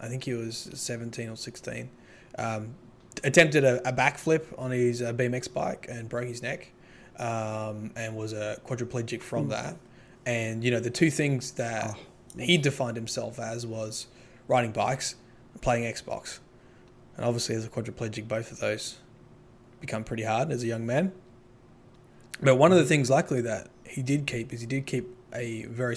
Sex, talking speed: male, 175 wpm